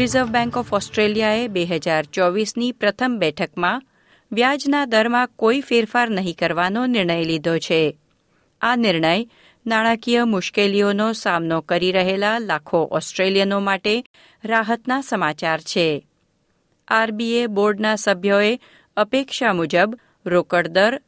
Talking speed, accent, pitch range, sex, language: 110 wpm, native, 180-245 Hz, female, Gujarati